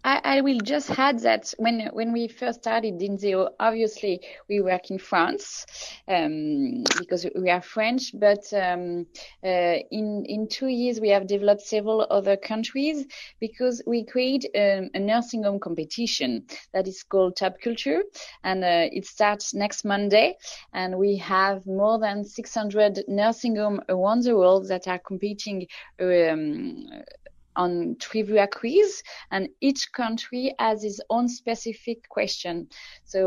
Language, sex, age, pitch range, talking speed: English, female, 20-39, 195-240 Hz, 145 wpm